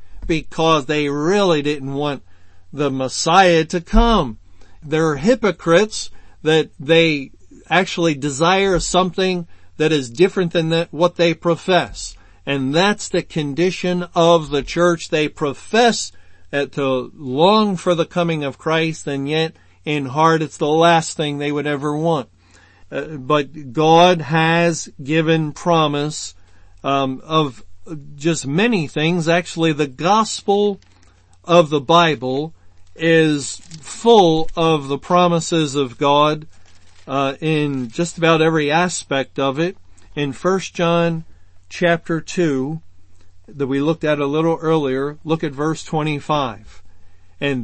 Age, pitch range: 50-69, 135-170 Hz